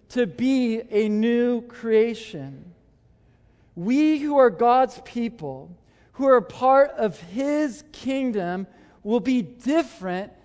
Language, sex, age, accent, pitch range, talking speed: English, male, 40-59, American, 205-255 Hz, 110 wpm